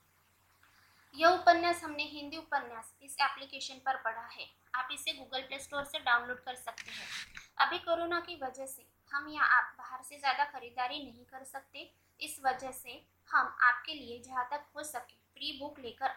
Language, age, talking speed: Hindi, 20-39, 180 wpm